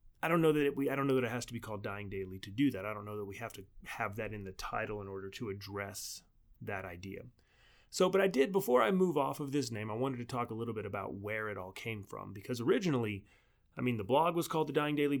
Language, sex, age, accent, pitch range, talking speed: English, male, 30-49, American, 105-130 Hz, 290 wpm